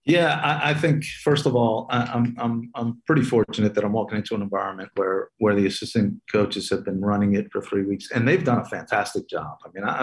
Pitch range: 95-115 Hz